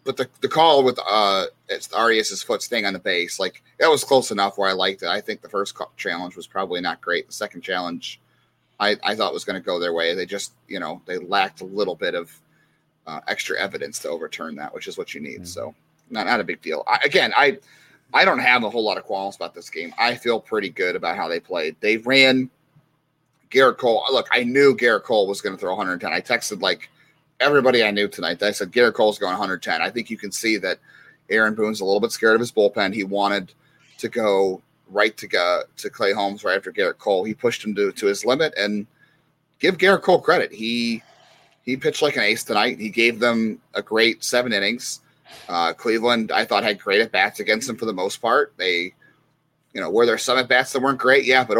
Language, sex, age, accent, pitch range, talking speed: English, male, 30-49, American, 110-145 Hz, 230 wpm